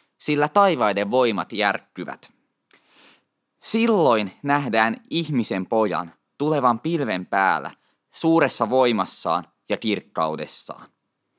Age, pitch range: 20-39, 105-165 Hz